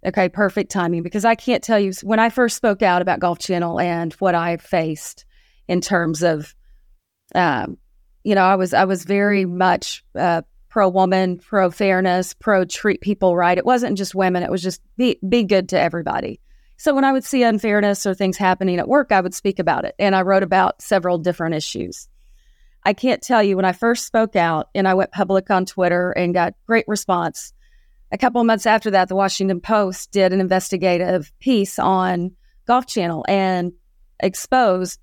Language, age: English, 30-49